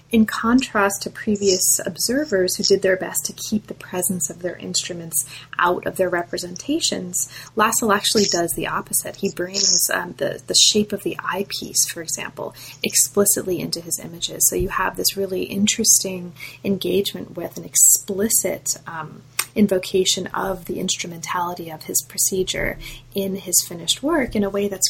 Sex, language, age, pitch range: female, English, 30-49, 175-205 Hz